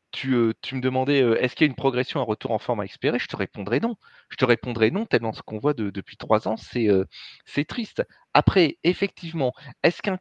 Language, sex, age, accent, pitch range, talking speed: French, male, 30-49, French, 120-160 Hz, 225 wpm